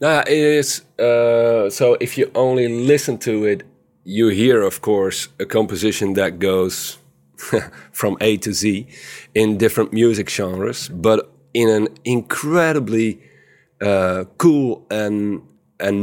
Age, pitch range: 40-59, 95-125 Hz